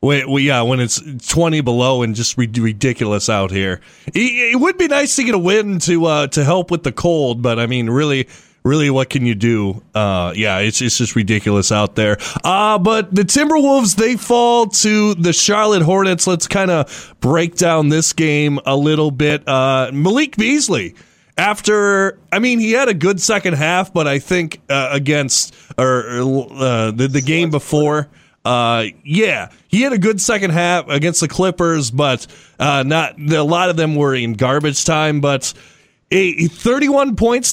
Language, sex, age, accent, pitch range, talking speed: English, male, 30-49, American, 130-190 Hz, 185 wpm